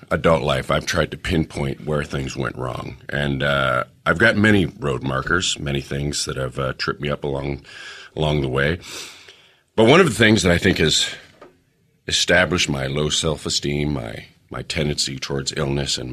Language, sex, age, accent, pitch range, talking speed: English, male, 40-59, American, 70-90 Hz, 180 wpm